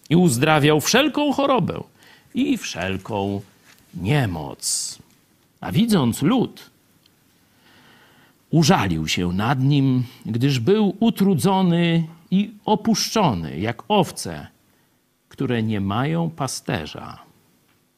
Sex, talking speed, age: male, 85 wpm, 50-69